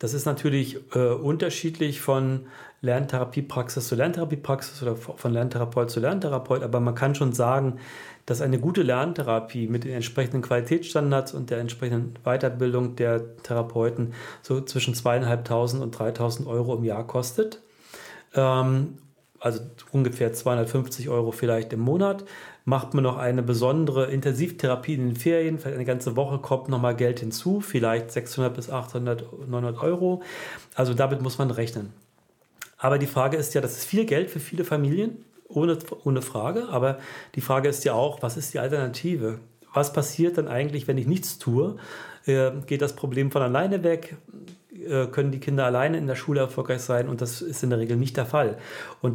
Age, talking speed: 40-59, 165 wpm